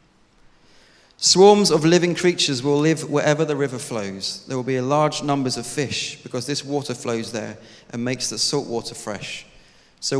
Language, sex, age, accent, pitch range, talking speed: English, male, 30-49, British, 115-150 Hz, 175 wpm